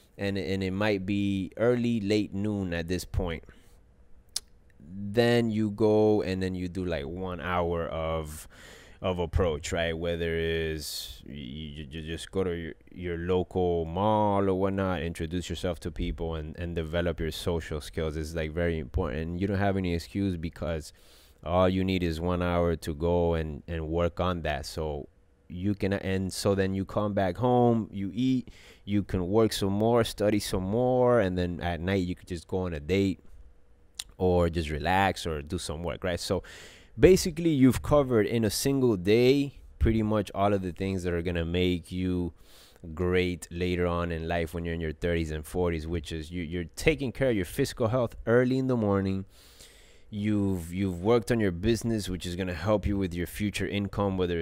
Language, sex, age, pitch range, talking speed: English, male, 20-39, 85-100 Hz, 190 wpm